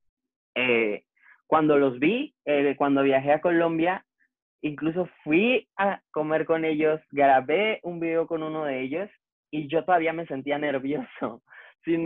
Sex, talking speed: male, 145 wpm